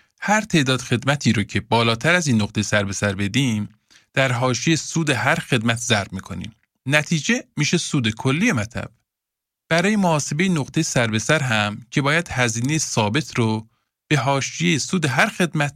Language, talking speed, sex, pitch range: Persian, 150 wpm, male, 110-155 Hz